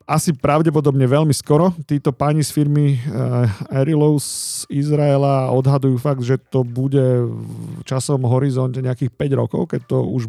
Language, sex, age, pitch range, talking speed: Slovak, male, 40-59, 115-140 Hz, 140 wpm